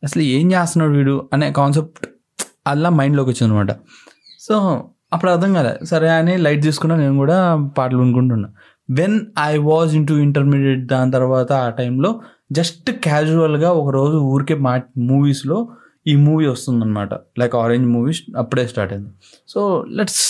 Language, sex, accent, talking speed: Telugu, male, native, 140 wpm